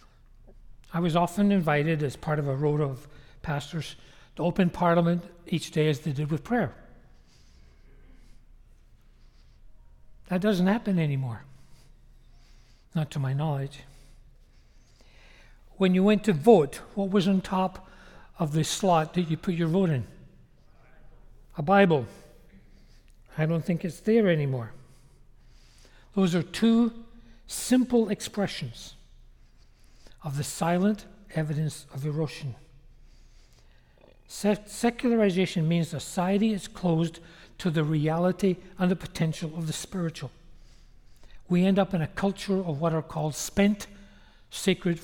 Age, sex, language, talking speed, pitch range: 60-79, male, English, 125 wpm, 140-185 Hz